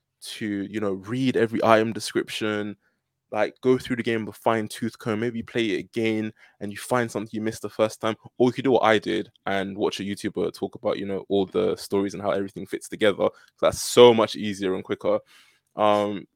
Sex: male